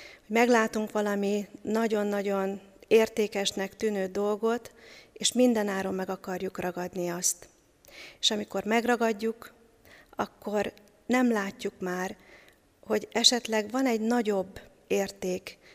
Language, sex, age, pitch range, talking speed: Hungarian, female, 40-59, 190-225 Hz, 95 wpm